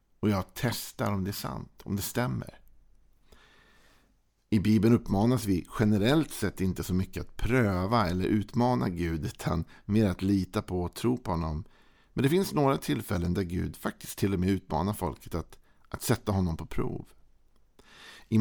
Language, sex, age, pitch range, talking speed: Swedish, male, 50-69, 90-105 Hz, 175 wpm